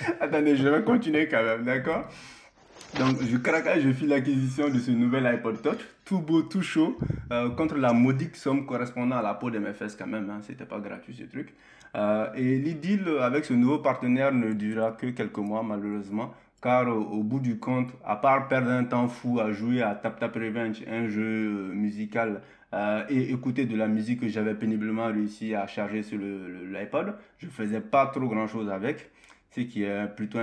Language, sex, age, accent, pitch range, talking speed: French, male, 20-39, French, 105-130 Hz, 205 wpm